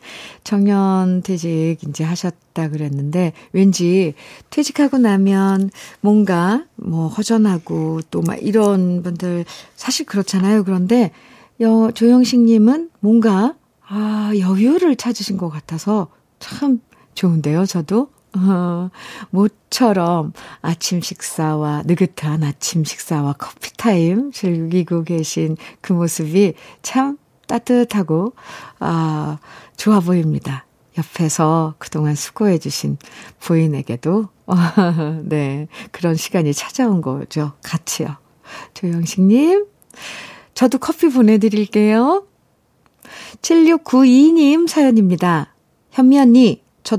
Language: Korean